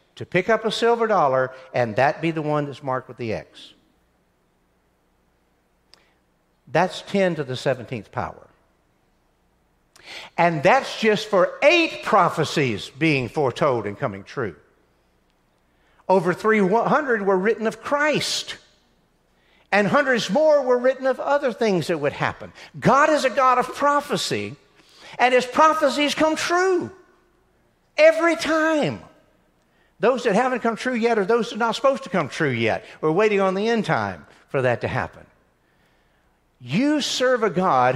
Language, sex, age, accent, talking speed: English, male, 60-79, American, 145 wpm